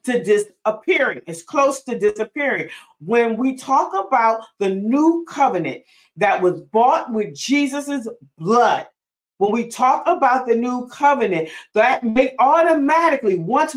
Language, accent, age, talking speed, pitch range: English, American, 40-59, 130 wpm, 220-285 Hz